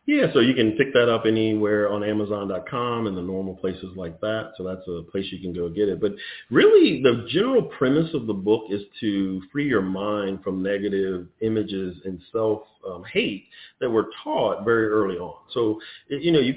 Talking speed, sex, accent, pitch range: 195 wpm, male, American, 95-120 Hz